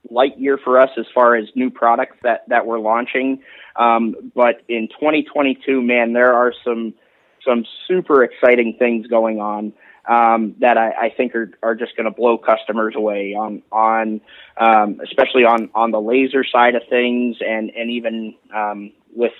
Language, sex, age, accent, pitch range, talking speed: English, male, 20-39, American, 115-130 Hz, 175 wpm